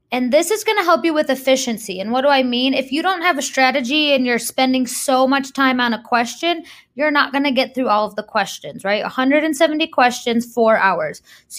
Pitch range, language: 230-285 Hz, English